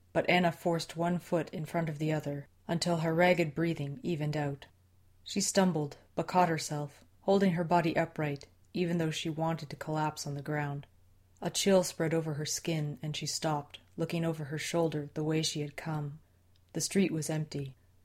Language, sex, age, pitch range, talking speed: English, female, 30-49, 145-170 Hz, 185 wpm